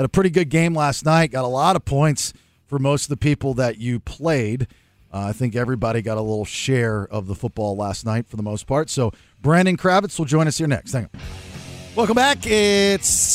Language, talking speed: English, 225 wpm